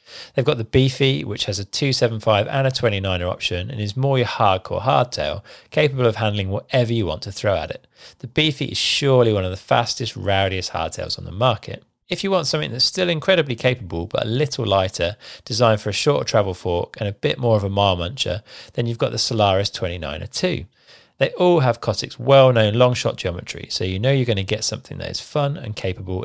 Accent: British